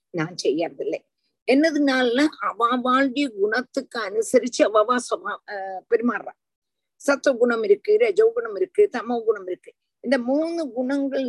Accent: native